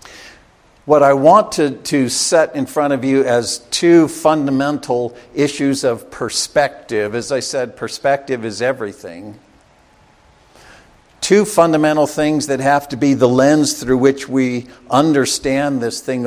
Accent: American